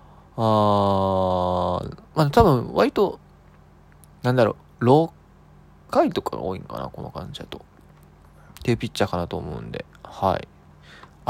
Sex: male